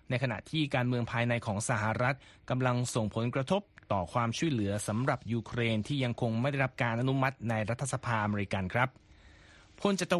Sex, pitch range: male, 120-150 Hz